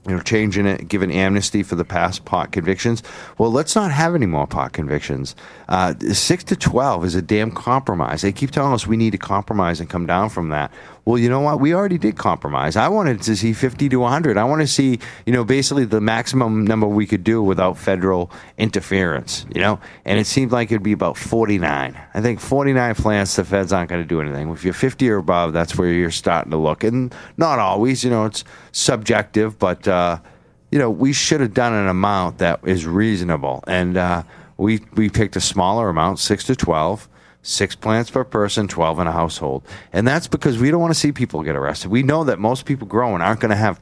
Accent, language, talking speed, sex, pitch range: American, English, 225 wpm, male, 90-125 Hz